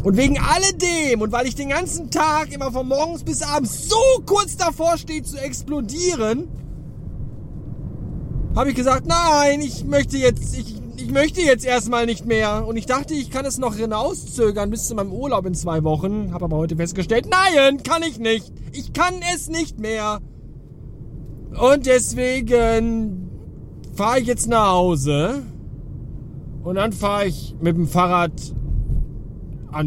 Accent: German